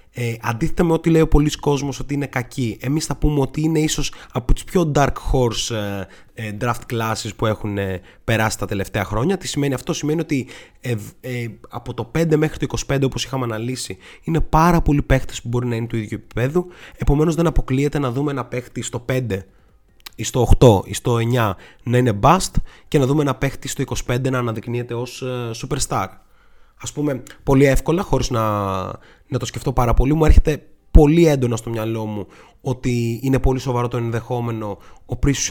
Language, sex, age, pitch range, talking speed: Greek, male, 20-39, 115-140 Hz, 195 wpm